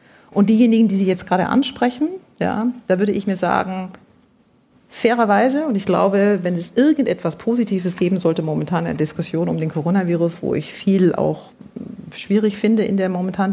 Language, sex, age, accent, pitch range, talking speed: English, female, 40-59, German, 175-215 Hz, 175 wpm